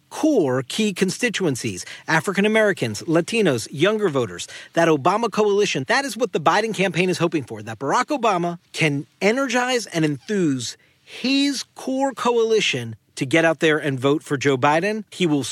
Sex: male